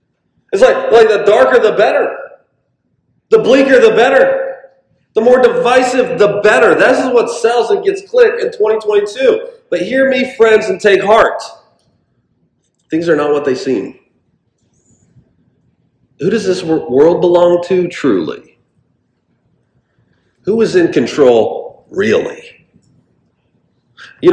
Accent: American